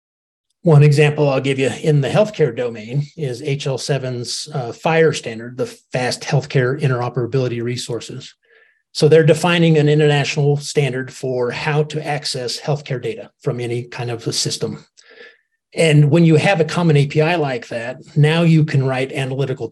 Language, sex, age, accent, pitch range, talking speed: English, male, 30-49, American, 125-155 Hz, 155 wpm